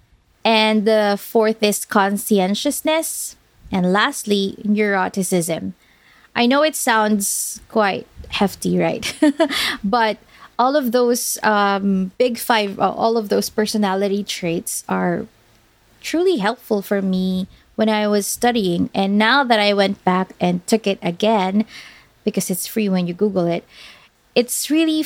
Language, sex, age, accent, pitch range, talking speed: English, female, 20-39, Filipino, 195-235 Hz, 130 wpm